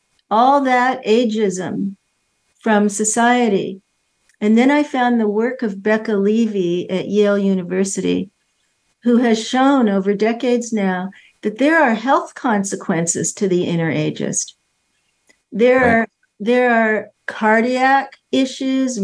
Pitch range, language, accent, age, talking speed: 195-245 Hz, English, American, 50-69, 115 wpm